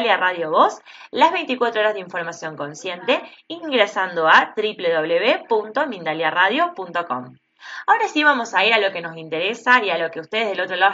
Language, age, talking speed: Spanish, 20-39, 160 wpm